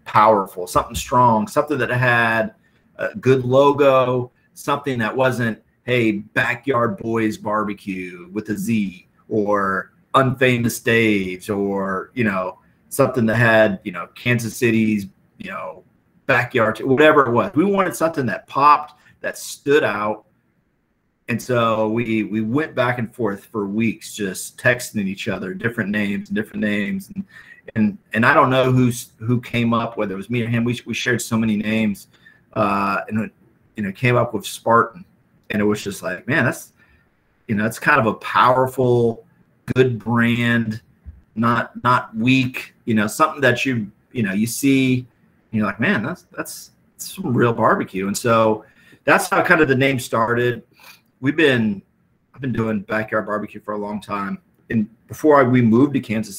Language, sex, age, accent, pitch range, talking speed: English, male, 40-59, American, 105-125 Hz, 175 wpm